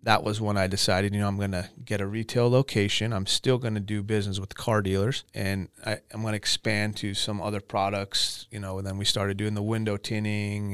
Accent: American